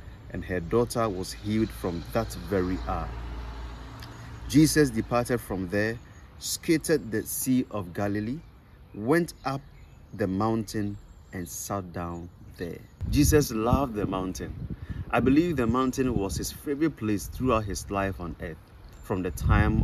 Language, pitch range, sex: English, 90-120 Hz, male